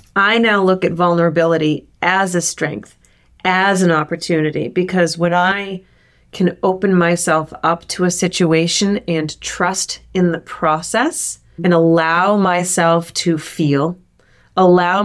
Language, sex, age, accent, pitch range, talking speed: English, female, 30-49, American, 160-180 Hz, 130 wpm